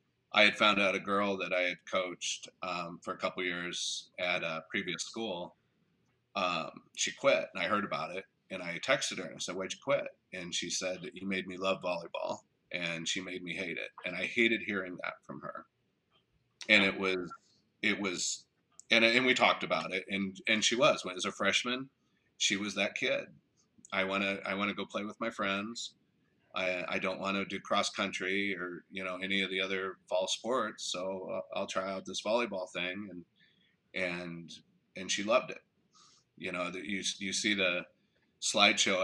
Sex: male